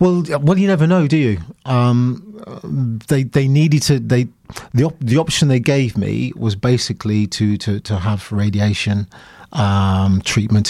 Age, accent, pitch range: 30-49, British, 110-130 Hz